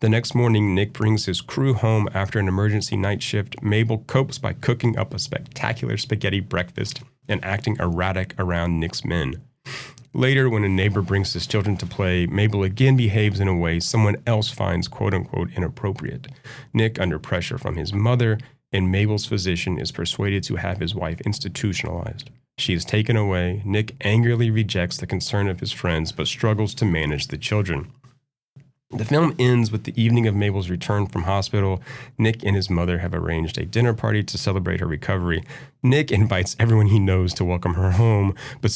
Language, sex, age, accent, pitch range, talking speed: English, male, 30-49, American, 95-125 Hz, 180 wpm